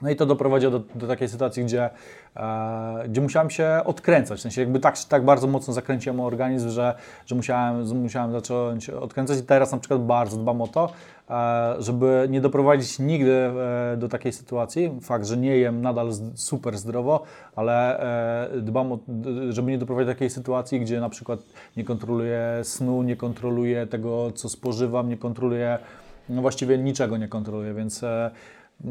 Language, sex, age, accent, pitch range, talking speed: Polish, male, 20-39, native, 120-135 Hz, 180 wpm